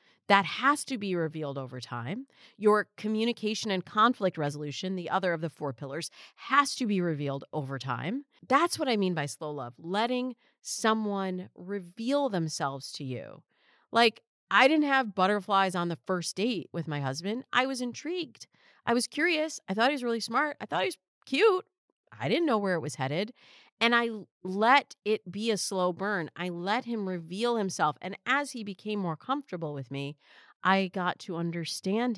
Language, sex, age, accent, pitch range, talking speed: English, female, 40-59, American, 160-230 Hz, 185 wpm